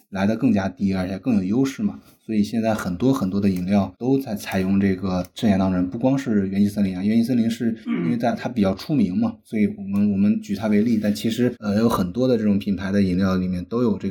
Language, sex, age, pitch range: Chinese, male, 20-39, 100-120 Hz